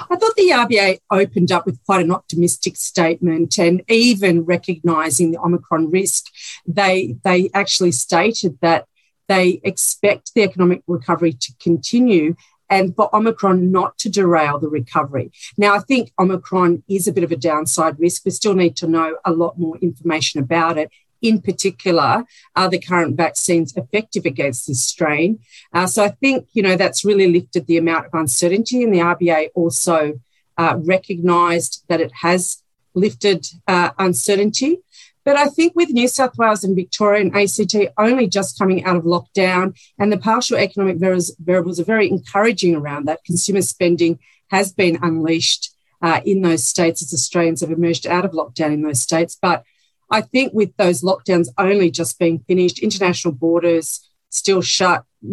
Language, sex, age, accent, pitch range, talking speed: English, female, 50-69, Australian, 165-195 Hz, 165 wpm